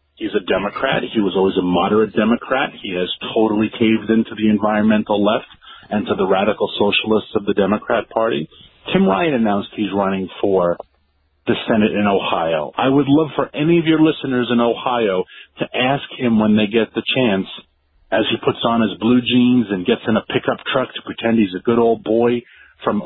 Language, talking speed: English, 195 wpm